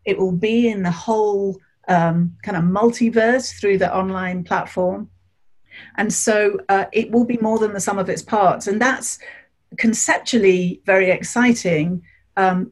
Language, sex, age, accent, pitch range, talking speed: English, female, 40-59, British, 175-215 Hz, 155 wpm